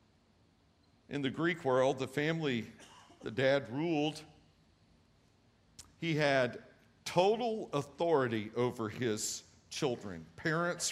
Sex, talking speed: male, 95 wpm